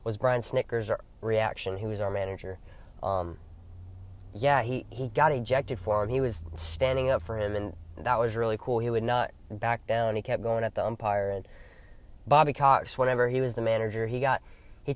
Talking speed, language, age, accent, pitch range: 195 wpm, English, 10-29, American, 105-125 Hz